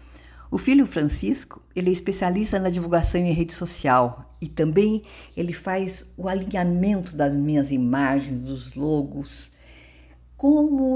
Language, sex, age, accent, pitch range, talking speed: Portuguese, female, 50-69, Brazilian, 130-180 Hz, 125 wpm